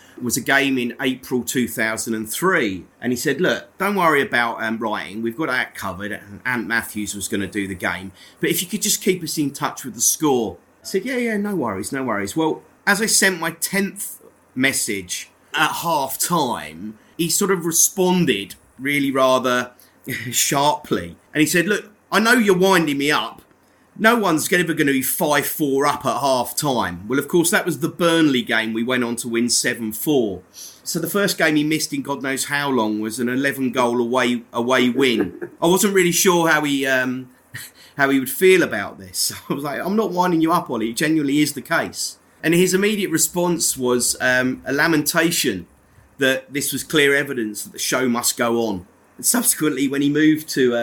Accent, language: British, English